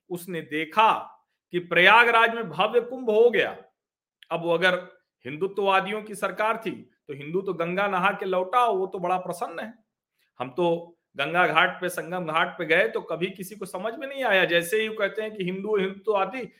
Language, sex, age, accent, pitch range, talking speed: Hindi, male, 40-59, native, 180-250 Hz, 150 wpm